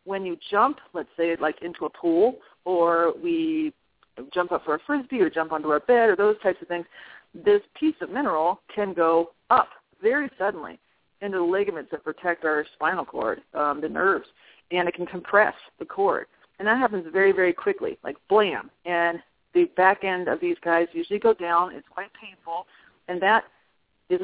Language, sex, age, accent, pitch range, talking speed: English, female, 40-59, American, 170-210 Hz, 190 wpm